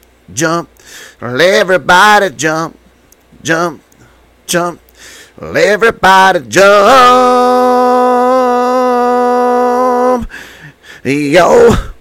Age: 30-49